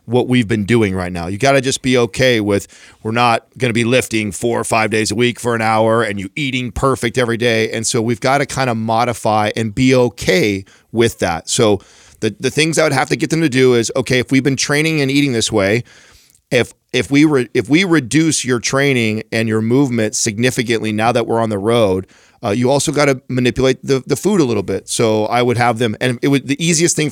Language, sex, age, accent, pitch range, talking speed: English, male, 40-59, American, 110-130 Hz, 245 wpm